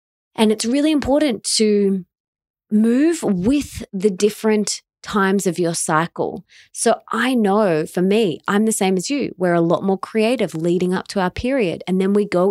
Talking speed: 180 wpm